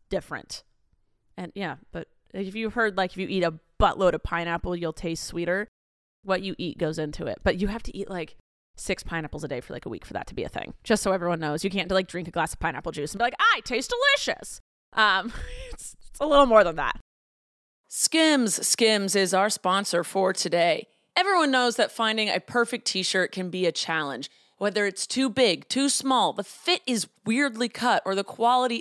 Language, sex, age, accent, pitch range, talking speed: English, female, 30-49, American, 190-260 Hz, 210 wpm